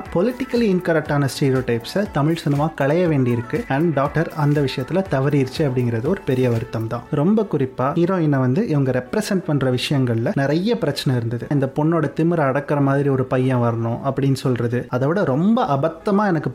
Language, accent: Tamil, native